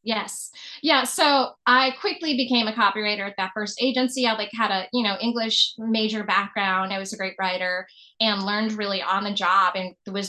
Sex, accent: female, American